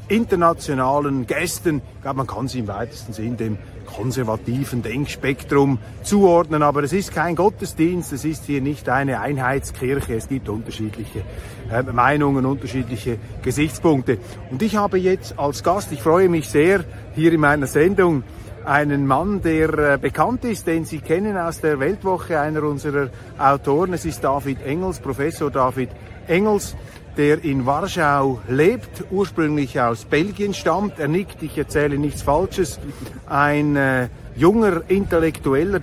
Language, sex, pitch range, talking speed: German, male, 125-160 Hz, 145 wpm